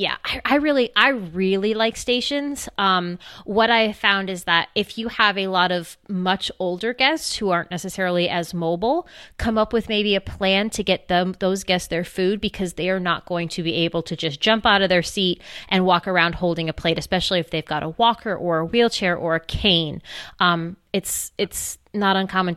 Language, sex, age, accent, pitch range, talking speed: English, female, 20-39, American, 170-205 Hz, 205 wpm